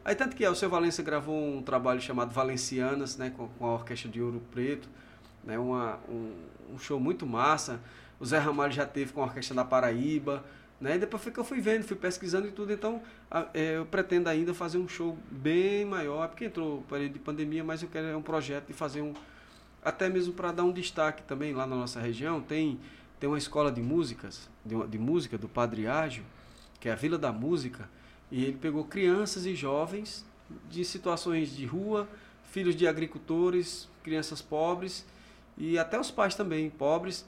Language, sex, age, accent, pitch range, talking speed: Portuguese, male, 20-39, Brazilian, 130-175 Hz, 190 wpm